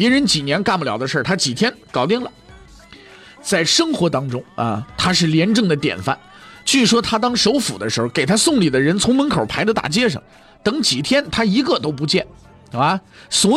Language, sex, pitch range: Chinese, male, 130-210 Hz